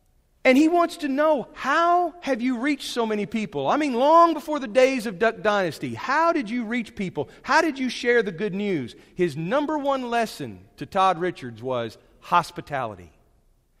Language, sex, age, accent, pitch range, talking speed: English, male, 40-59, American, 115-190 Hz, 185 wpm